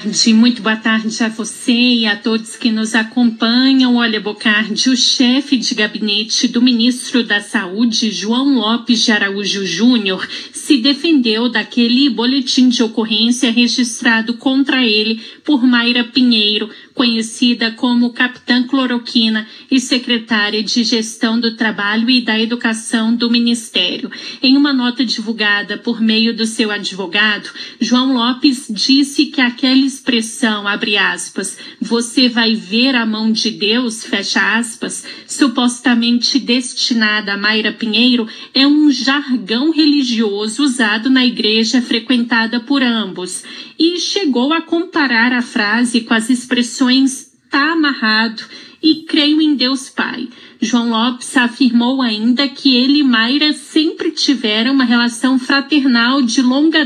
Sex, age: female, 40-59